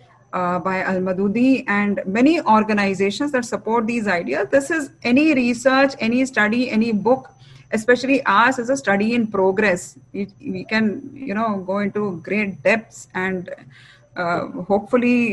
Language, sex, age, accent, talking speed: English, female, 20-39, Indian, 150 wpm